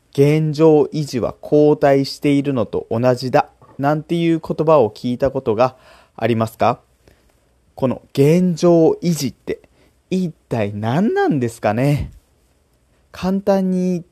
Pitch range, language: 105-155 Hz, Japanese